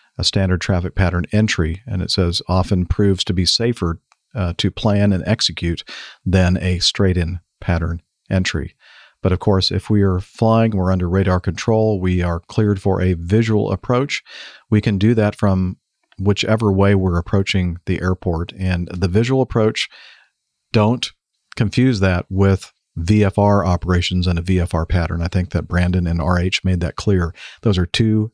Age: 50-69